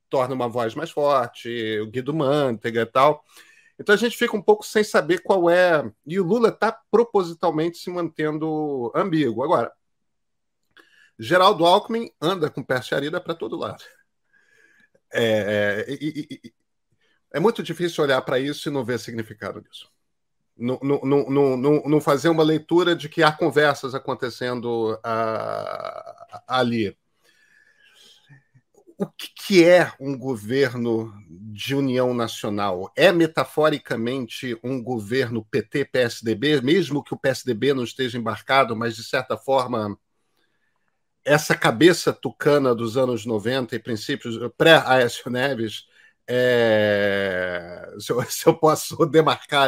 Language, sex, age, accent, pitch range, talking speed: Portuguese, male, 40-59, Brazilian, 120-165 Hz, 125 wpm